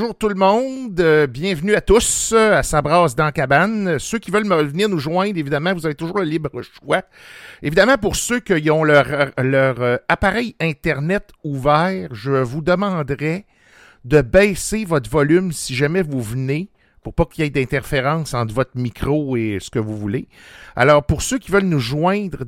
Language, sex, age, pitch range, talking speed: French, male, 50-69, 135-185 Hz, 180 wpm